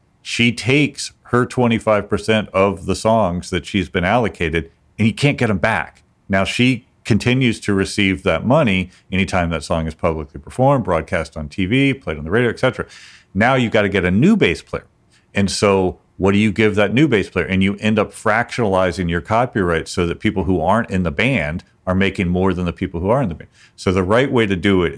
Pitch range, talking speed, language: 85-110 Hz, 220 wpm, English